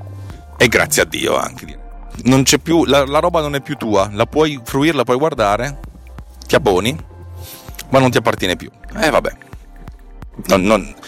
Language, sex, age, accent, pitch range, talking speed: Italian, male, 40-59, native, 95-125 Hz, 175 wpm